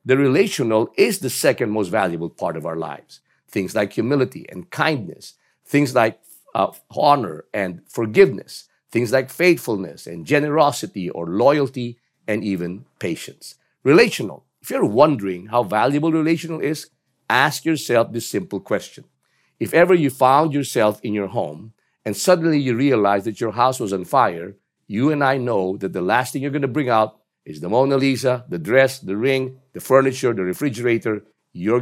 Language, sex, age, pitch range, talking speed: English, male, 50-69, 110-155 Hz, 170 wpm